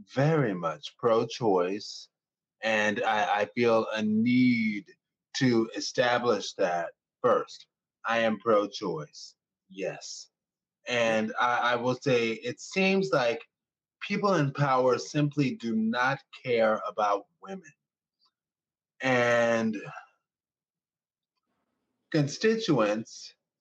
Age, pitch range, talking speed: 20-39, 120-165 Hz, 95 wpm